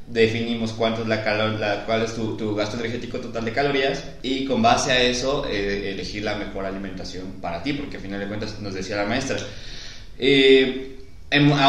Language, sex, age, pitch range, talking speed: Spanish, male, 20-39, 100-120 Hz, 190 wpm